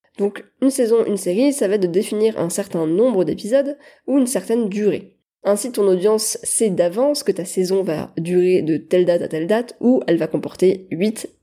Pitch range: 180-230 Hz